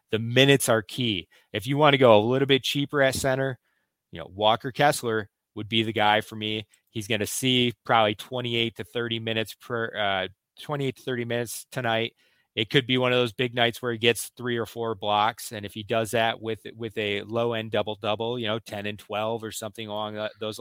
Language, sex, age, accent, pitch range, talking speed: English, male, 30-49, American, 105-130 Hz, 225 wpm